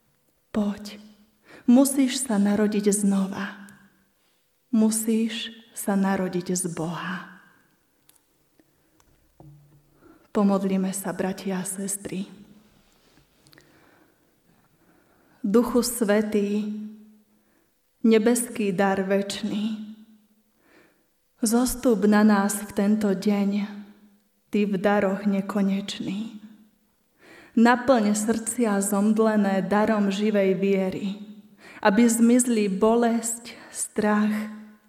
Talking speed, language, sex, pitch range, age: 70 wpm, Slovak, female, 200-220 Hz, 30-49